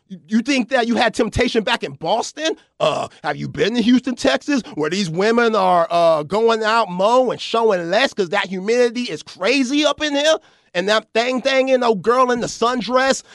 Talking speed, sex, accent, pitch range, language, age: 200 wpm, male, American, 185-245 Hz, English, 30-49